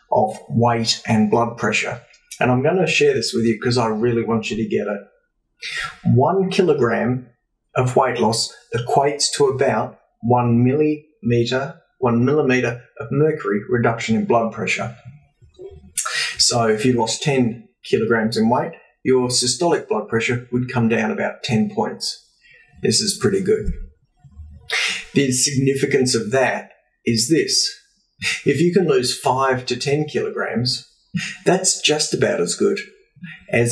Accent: Australian